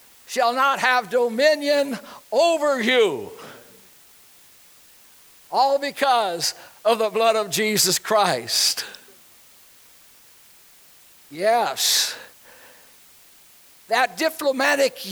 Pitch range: 225-290 Hz